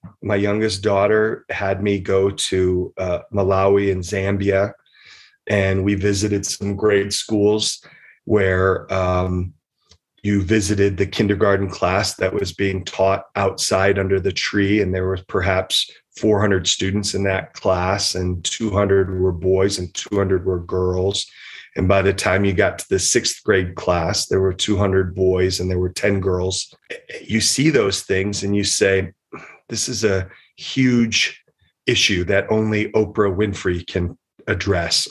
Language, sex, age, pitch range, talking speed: English, male, 30-49, 95-105 Hz, 150 wpm